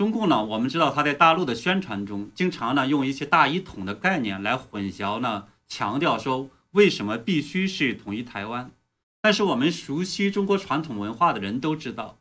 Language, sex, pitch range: Chinese, male, 110-165 Hz